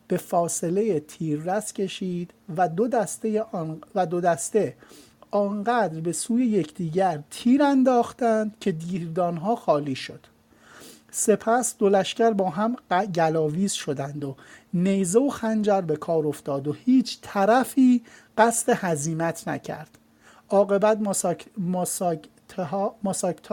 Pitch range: 170-220 Hz